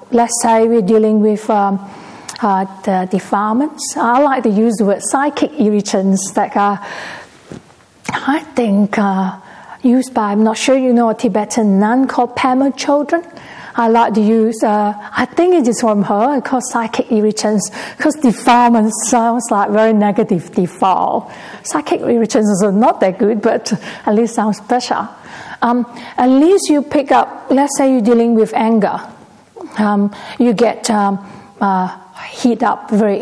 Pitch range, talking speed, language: 205-250 Hz, 155 wpm, English